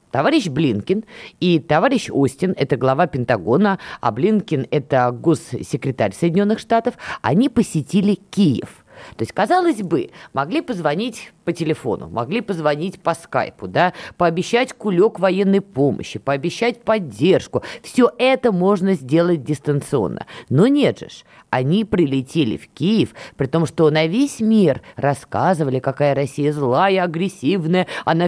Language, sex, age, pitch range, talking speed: Russian, female, 20-39, 145-205 Hz, 125 wpm